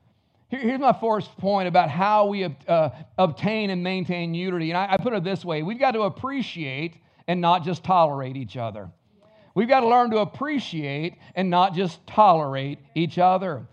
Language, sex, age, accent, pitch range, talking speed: English, male, 50-69, American, 165-225 Hz, 170 wpm